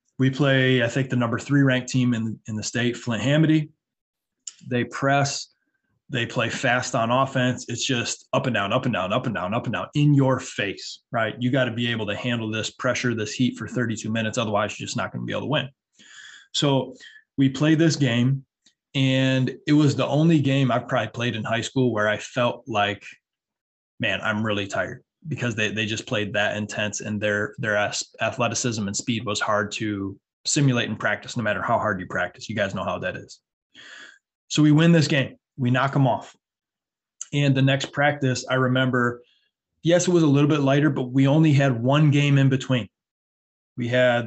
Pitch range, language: 115-135 Hz, English